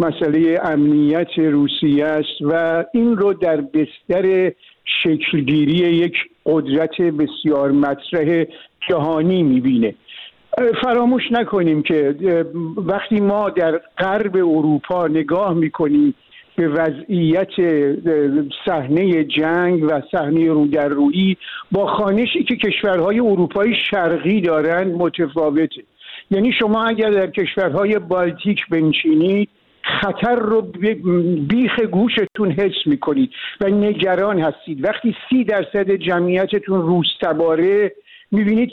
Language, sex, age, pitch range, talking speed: Persian, male, 50-69, 165-205 Hz, 100 wpm